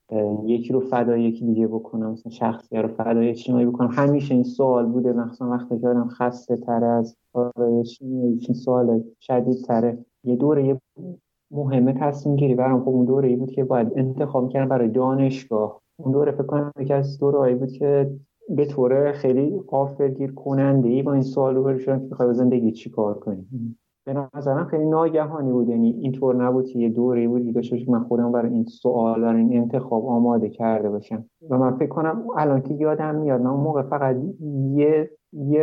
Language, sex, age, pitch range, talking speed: Persian, male, 30-49, 120-140 Hz, 180 wpm